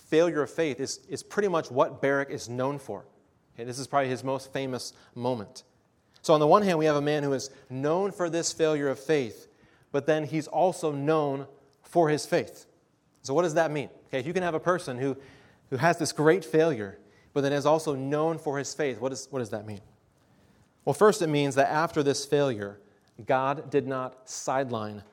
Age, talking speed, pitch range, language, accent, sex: 30-49, 205 wpm, 120-155 Hz, English, American, male